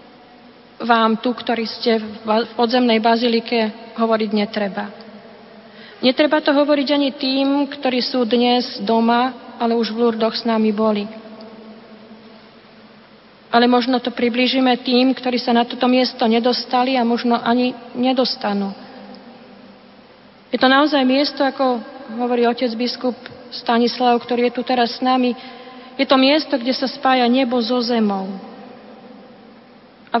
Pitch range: 225-255 Hz